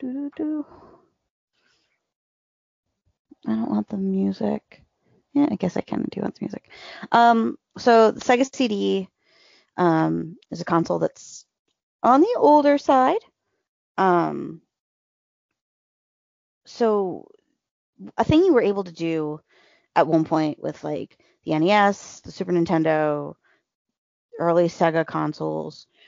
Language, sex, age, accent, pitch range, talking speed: English, female, 20-39, American, 145-205 Hz, 115 wpm